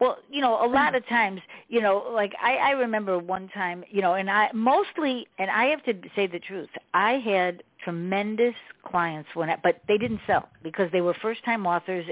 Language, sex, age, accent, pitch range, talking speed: English, female, 50-69, American, 175-240 Hz, 210 wpm